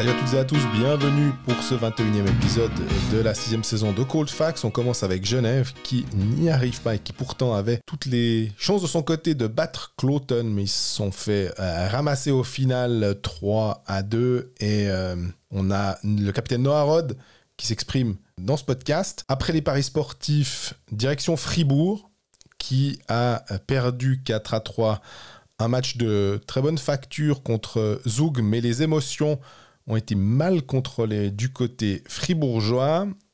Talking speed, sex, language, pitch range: 170 wpm, male, French, 110-145 Hz